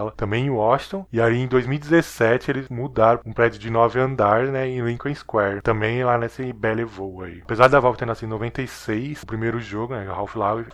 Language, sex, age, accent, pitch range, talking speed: Portuguese, male, 20-39, Brazilian, 110-130 Hz, 200 wpm